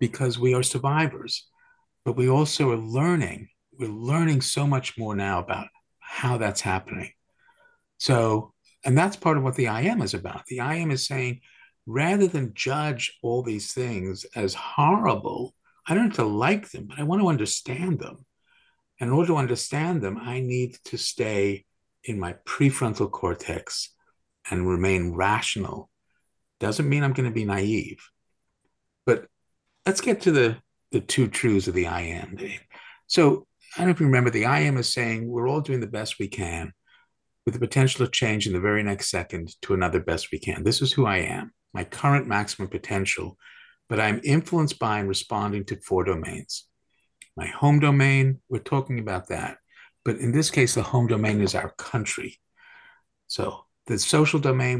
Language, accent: English, American